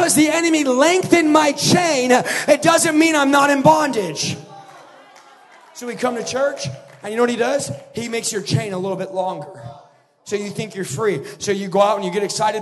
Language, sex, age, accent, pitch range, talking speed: English, male, 20-39, American, 200-295 Hz, 210 wpm